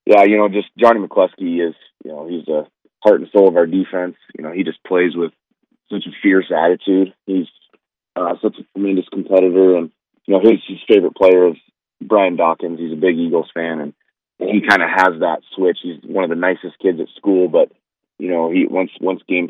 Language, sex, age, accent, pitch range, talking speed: English, male, 30-49, American, 80-95 Hz, 215 wpm